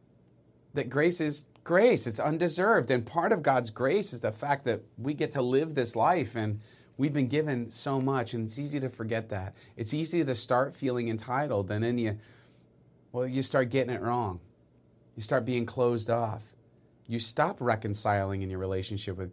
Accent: American